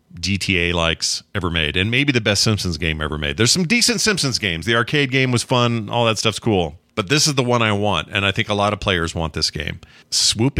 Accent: American